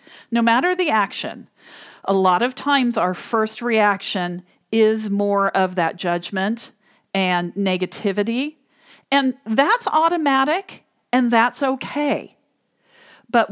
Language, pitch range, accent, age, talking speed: English, 190-245 Hz, American, 40-59, 110 wpm